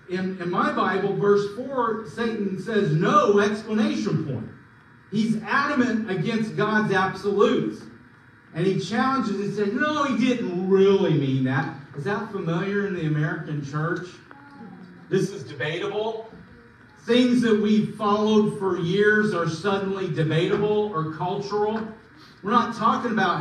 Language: English